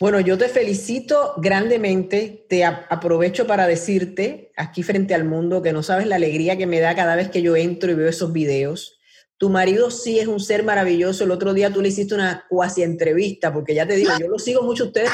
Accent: American